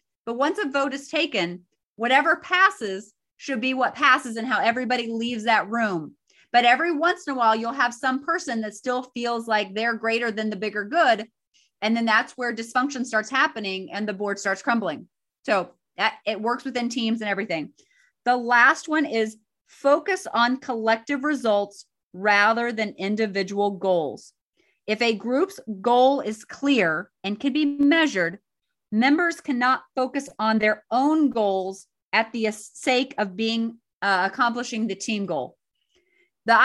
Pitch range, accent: 215-260 Hz, American